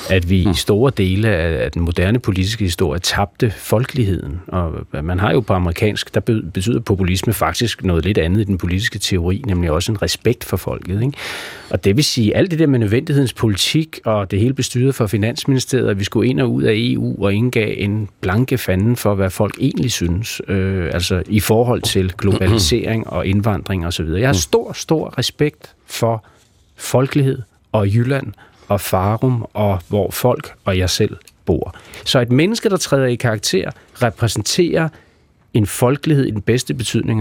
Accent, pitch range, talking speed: native, 95-125 Hz, 180 wpm